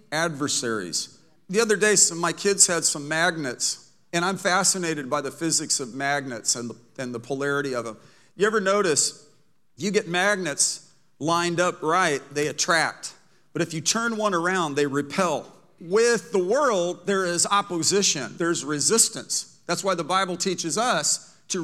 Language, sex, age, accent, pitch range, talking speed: English, male, 50-69, American, 160-200 Hz, 165 wpm